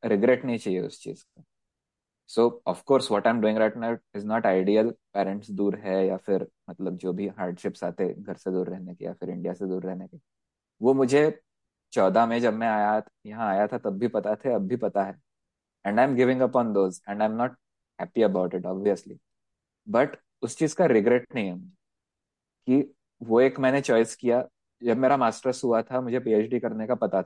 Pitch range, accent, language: 95-125 Hz, native, Hindi